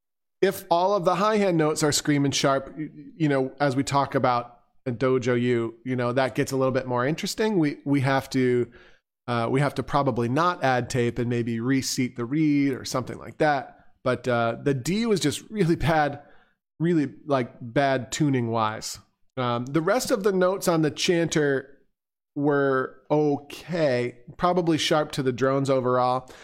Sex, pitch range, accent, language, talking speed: male, 130-160 Hz, American, English, 180 wpm